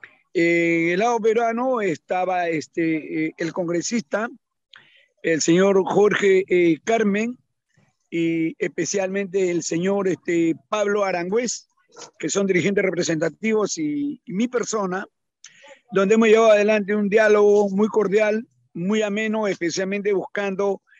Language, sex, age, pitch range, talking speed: Spanish, male, 50-69, 185-220 Hz, 115 wpm